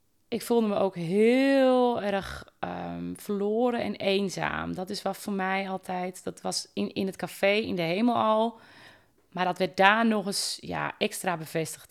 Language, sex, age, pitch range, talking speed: Dutch, female, 30-49, 175-210 Hz, 175 wpm